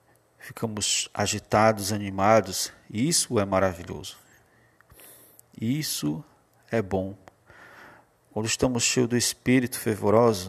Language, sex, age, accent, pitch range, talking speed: Portuguese, male, 50-69, Brazilian, 95-120 Hz, 85 wpm